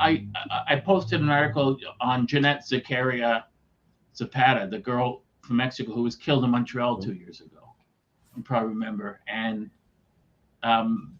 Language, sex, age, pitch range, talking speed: English, male, 50-69, 105-130 Hz, 140 wpm